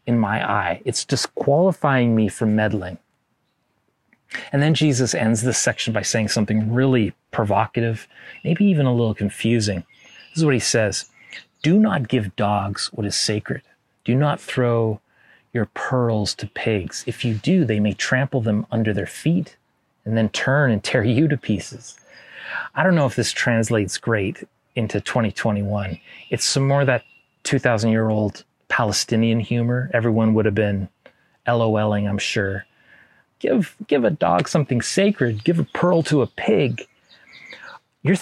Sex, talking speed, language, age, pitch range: male, 150 wpm, English, 30-49, 110-135 Hz